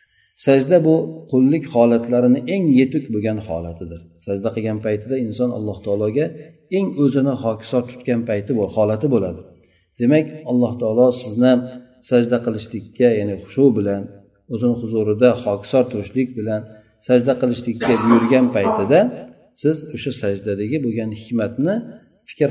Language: Russian